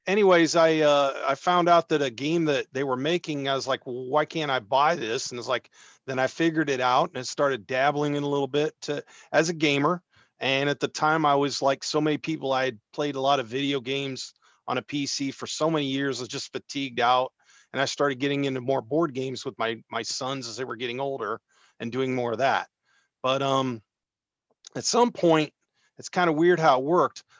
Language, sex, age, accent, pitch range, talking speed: English, male, 40-59, American, 130-160 Hz, 230 wpm